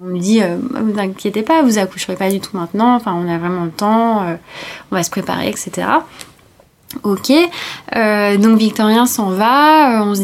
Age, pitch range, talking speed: 20-39, 185-225 Hz, 195 wpm